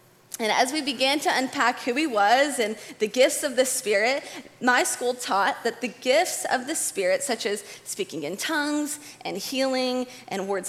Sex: female